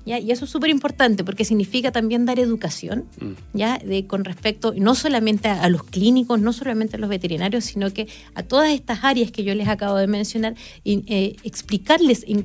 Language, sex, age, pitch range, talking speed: Spanish, female, 30-49, 195-240 Hz, 200 wpm